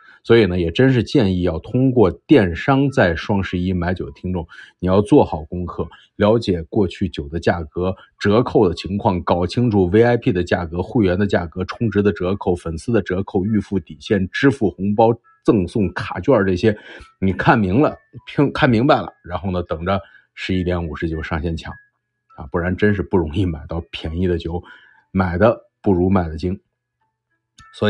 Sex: male